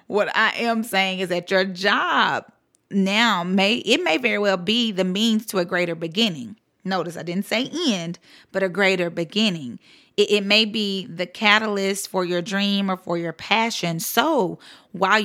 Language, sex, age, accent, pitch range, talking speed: English, female, 30-49, American, 175-210 Hz, 175 wpm